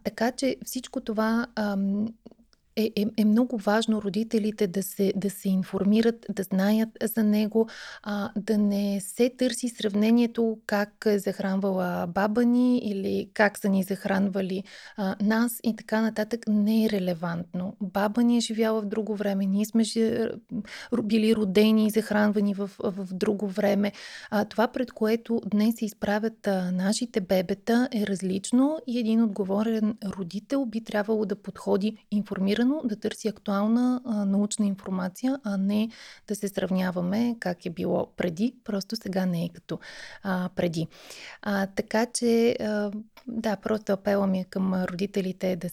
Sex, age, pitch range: female, 30-49, 195-225 Hz